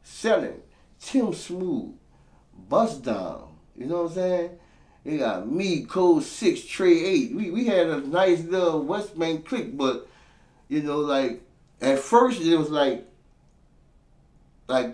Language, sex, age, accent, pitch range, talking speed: English, male, 30-49, American, 110-150 Hz, 145 wpm